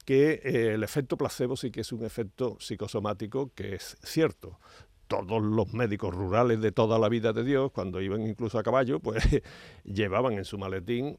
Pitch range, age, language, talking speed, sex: 100-125 Hz, 60-79, Spanish, 180 wpm, male